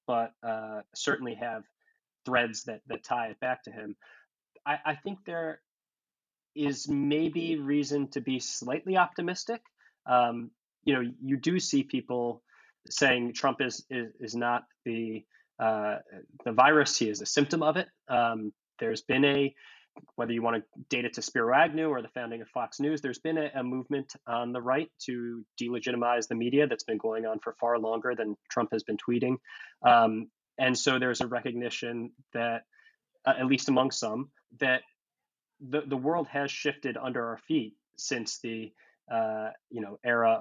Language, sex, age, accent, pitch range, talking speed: English, male, 20-39, American, 115-140 Hz, 170 wpm